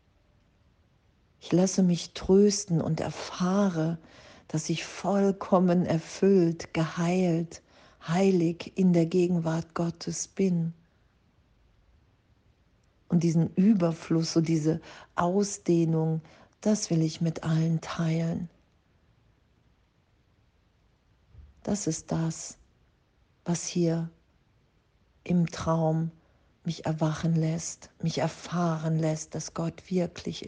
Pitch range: 140-175 Hz